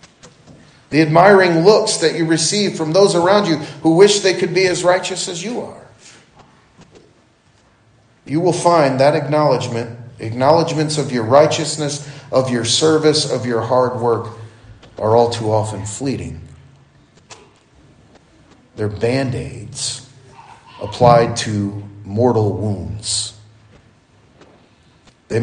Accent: American